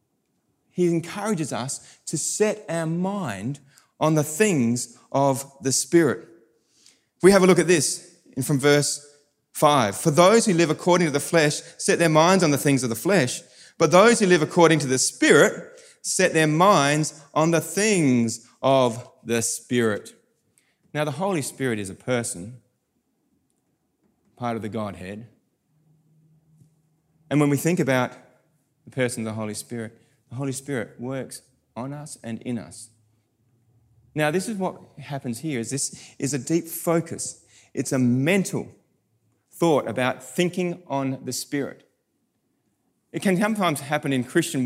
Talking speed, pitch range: 155 wpm, 125-165 Hz